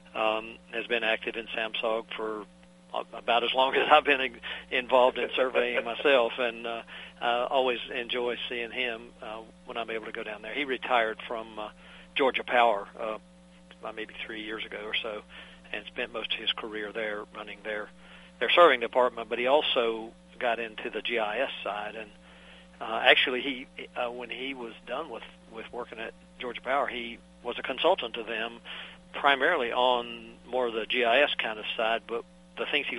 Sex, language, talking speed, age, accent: male, English, 180 wpm, 50-69, American